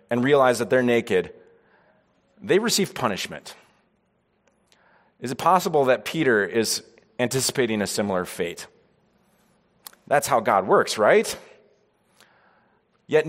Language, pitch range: English, 115-165 Hz